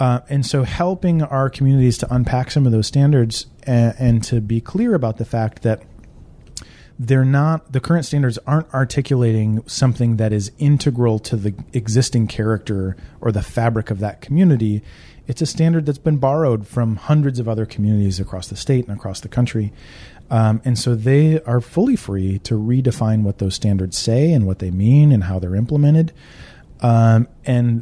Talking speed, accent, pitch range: 180 wpm, American, 105-135 Hz